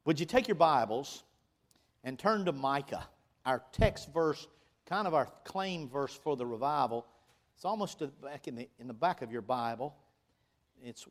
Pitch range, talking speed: 120-150 Hz, 175 wpm